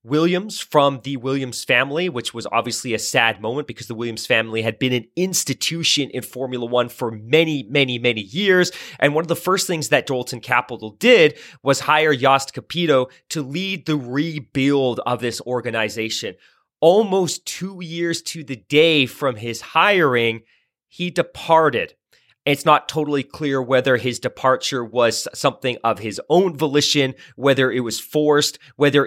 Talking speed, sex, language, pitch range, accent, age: 160 wpm, male, English, 120-155 Hz, American, 30-49